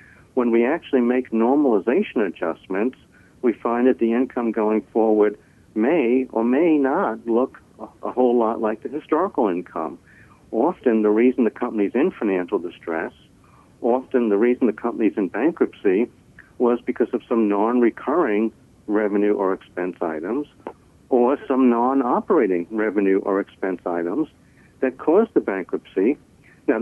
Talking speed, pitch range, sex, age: 135 wpm, 105-125 Hz, male, 60-79